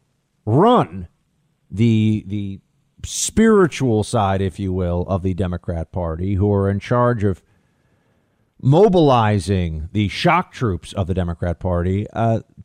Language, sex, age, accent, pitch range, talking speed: English, male, 50-69, American, 95-130 Hz, 125 wpm